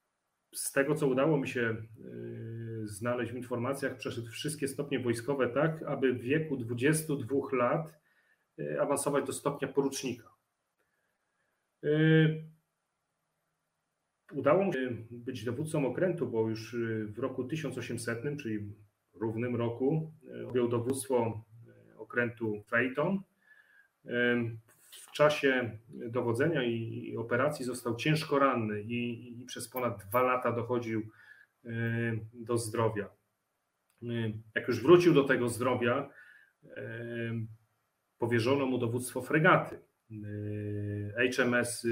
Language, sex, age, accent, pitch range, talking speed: Polish, male, 30-49, native, 115-140 Hz, 95 wpm